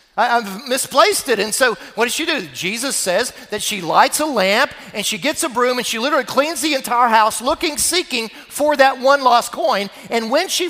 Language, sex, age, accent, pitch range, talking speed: English, male, 40-59, American, 230-315 Hz, 215 wpm